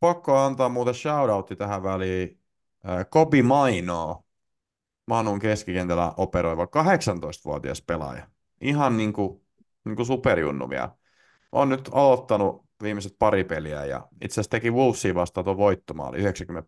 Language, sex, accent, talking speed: Finnish, male, native, 120 wpm